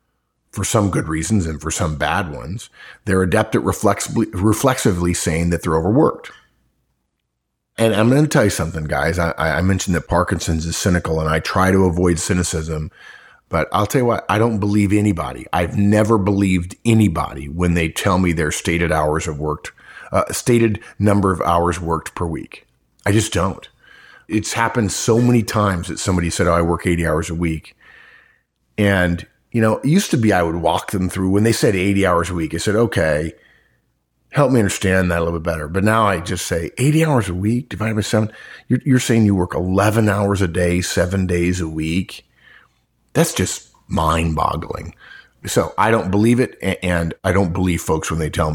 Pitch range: 85-105 Hz